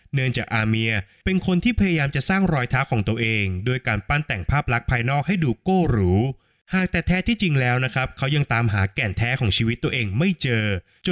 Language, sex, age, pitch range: Thai, male, 20-39, 115-150 Hz